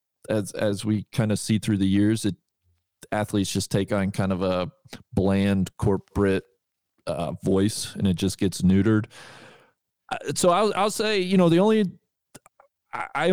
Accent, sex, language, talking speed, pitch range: American, male, English, 160 wpm, 95-120 Hz